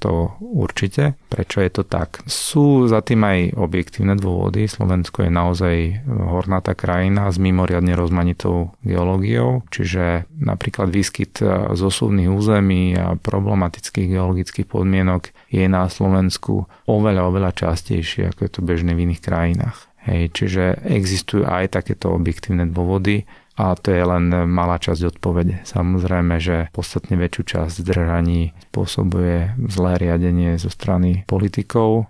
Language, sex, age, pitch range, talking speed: Slovak, male, 30-49, 90-100 Hz, 130 wpm